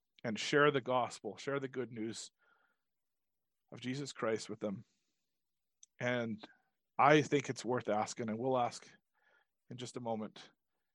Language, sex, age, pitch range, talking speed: English, male, 40-59, 115-135 Hz, 140 wpm